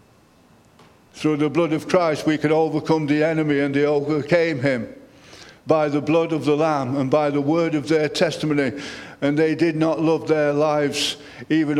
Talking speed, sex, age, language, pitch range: 180 wpm, male, 50-69, English, 150-185 Hz